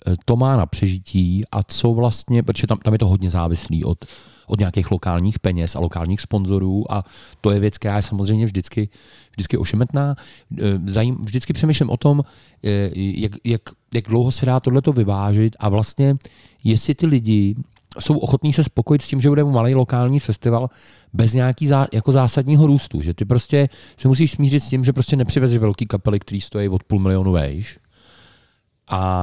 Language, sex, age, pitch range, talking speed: Czech, male, 40-59, 95-130 Hz, 175 wpm